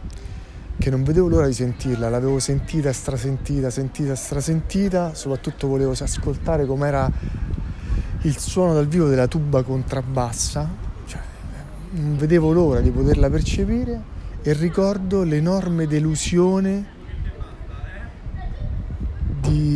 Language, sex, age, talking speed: Italian, male, 30-49, 105 wpm